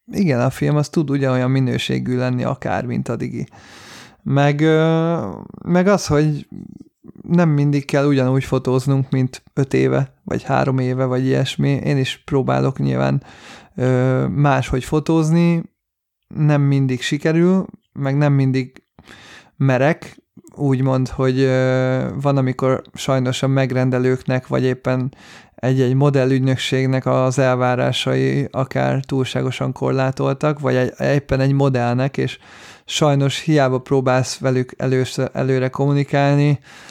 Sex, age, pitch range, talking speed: male, 30-49, 125-140 Hz, 115 wpm